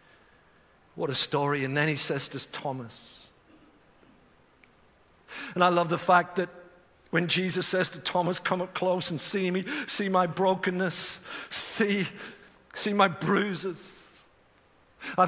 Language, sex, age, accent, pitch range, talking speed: English, male, 50-69, British, 200-240 Hz, 135 wpm